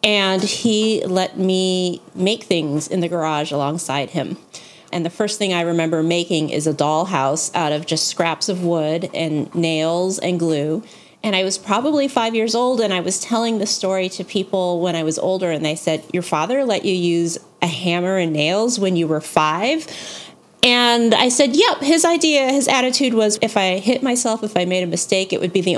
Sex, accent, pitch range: female, American, 165-225 Hz